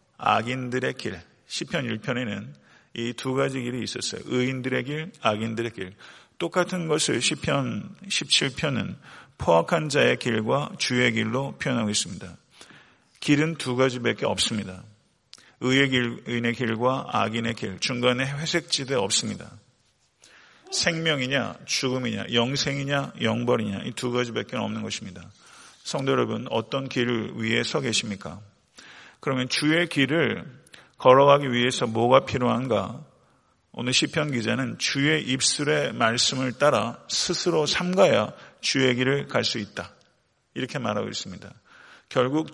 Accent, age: native, 40-59